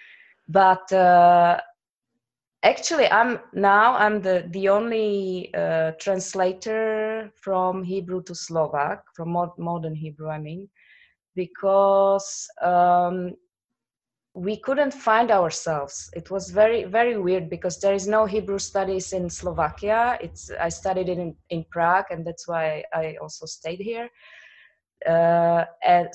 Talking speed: 125 wpm